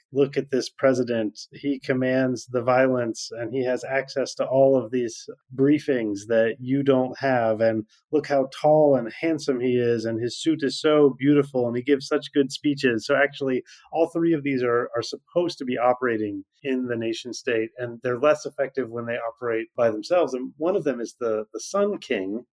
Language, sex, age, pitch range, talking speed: English, male, 30-49, 115-145 Hz, 200 wpm